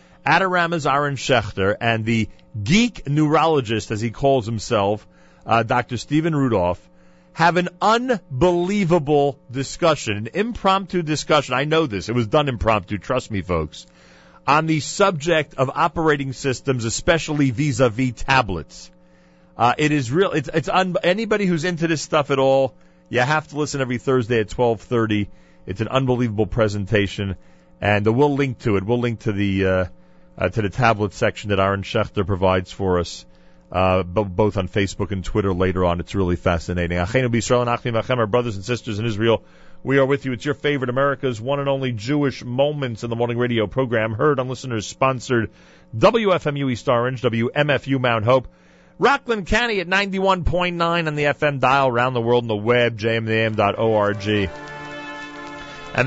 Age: 40-59